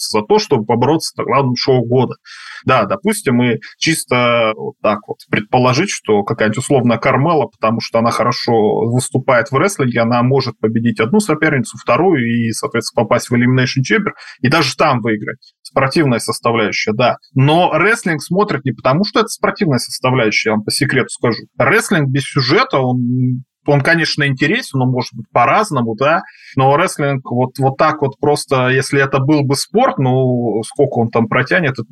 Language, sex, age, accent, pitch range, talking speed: Russian, male, 20-39, native, 120-145 Hz, 170 wpm